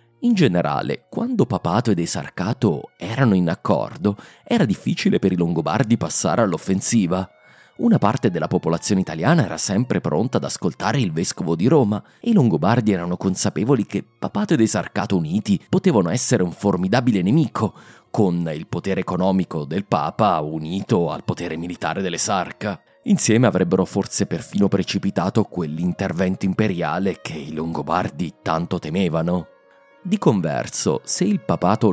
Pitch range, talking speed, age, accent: 90-125 Hz, 140 wpm, 30-49, native